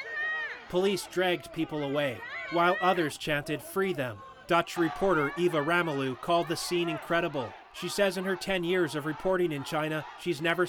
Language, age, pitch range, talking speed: English, 30-49, 145-180 Hz, 165 wpm